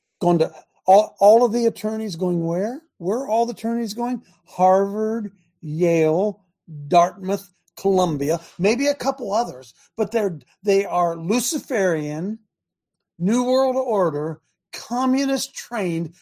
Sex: male